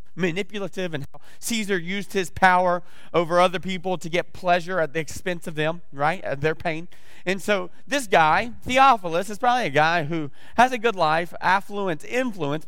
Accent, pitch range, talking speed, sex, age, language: American, 145-200 Hz, 175 wpm, male, 30-49, English